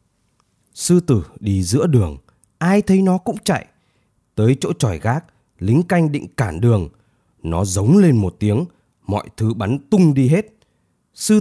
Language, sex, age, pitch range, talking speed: Vietnamese, male, 20-39, 100-130 Hz, 165 wpm